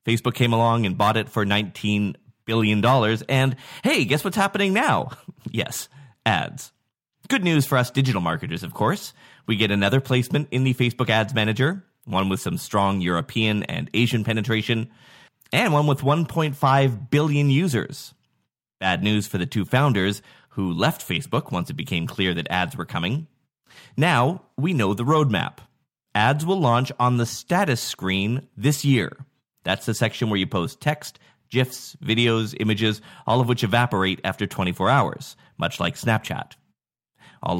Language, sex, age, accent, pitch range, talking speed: English, male, 30-49, American, 110-145 Hz, 160 wpm